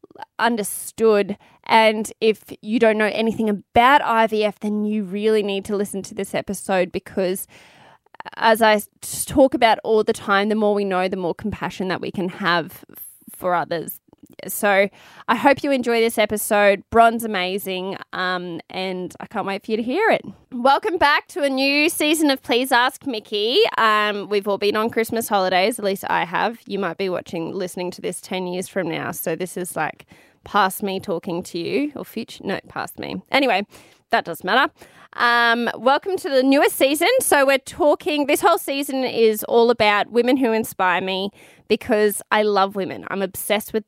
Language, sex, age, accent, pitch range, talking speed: English, female, 20-39, Australian, 195-240 Hz, 185 wpm